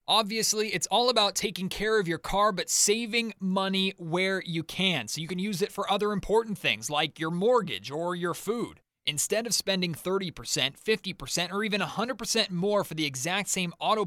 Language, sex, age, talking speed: English, male, 30-49, 190 wpm